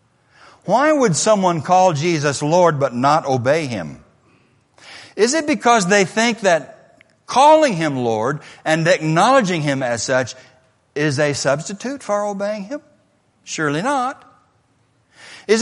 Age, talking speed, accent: 60-79, 125 wpm, American